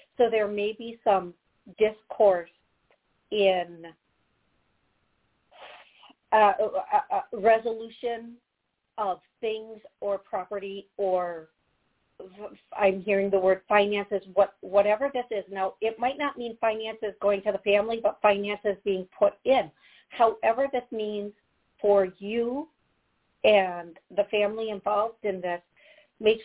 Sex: female